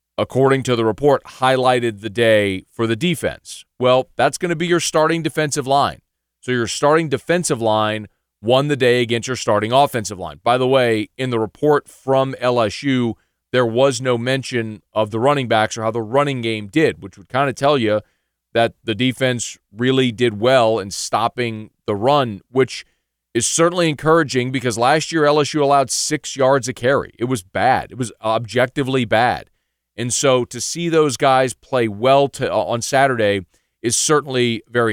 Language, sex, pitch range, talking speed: English, male, 110-135 Hz, 180 wpm